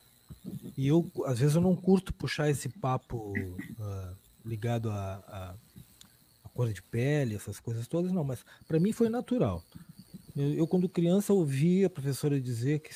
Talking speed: 165 wpm